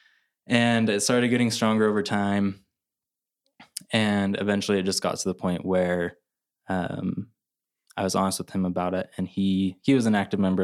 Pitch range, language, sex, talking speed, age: 90-100 Hz, English, male, 175 wpm, 20-39